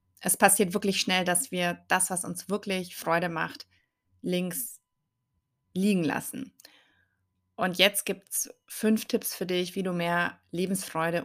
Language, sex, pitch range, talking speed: German, female, 165-185 Hz, 145 wpm